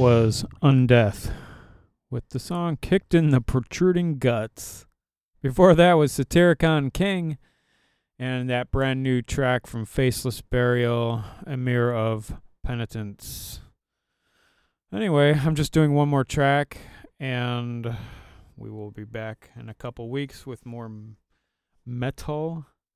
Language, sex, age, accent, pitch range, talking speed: English, male, 30-49, American, 120-150 Hz, 125 wpm